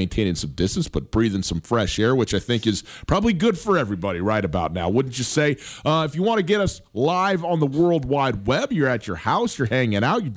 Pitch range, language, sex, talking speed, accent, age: 105-145 Hz, English, male, 250 wpm, American, 40-59